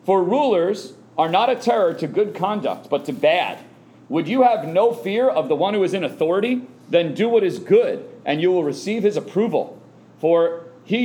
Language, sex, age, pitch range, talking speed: English, male, 40-59, 160-250 Hz, 200 wpm